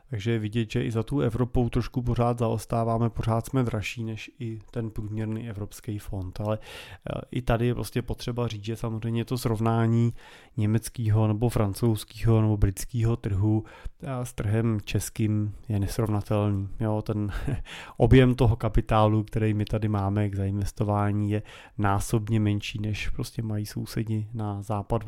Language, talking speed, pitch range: Czech, 150 wpm, 105-120 Hz